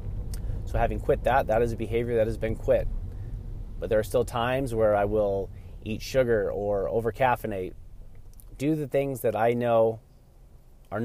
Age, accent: 30-49, American